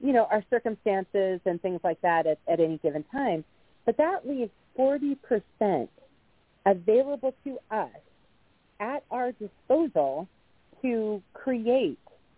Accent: American